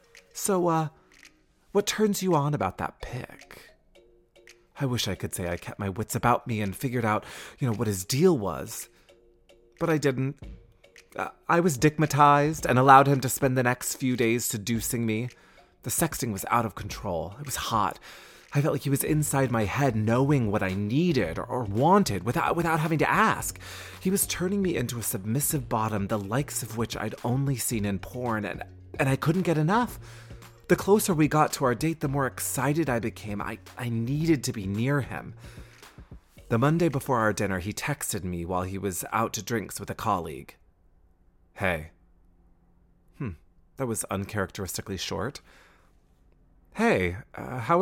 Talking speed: 180 wpm